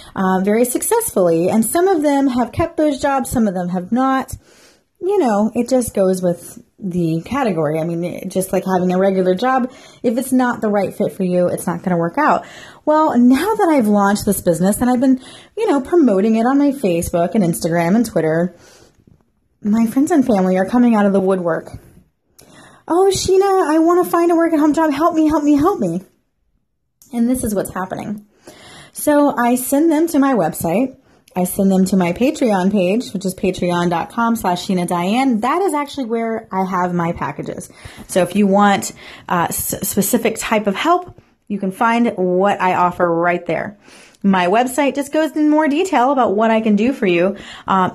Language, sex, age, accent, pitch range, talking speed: English, female, 30-49, American, 185-270 Hz, 200 wpm